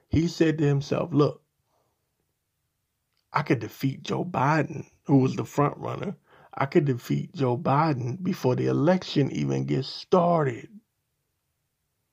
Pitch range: 130-160 Hz